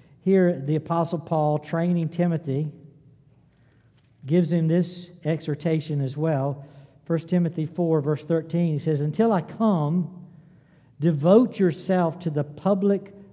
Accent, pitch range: American, 140-170 Hz